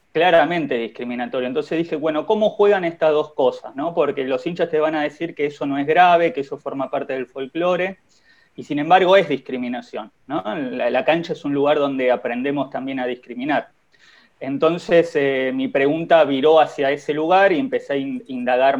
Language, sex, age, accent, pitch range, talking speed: Spanish, male, 20-39, Argentinian, 135-170 Hz, 185 wpm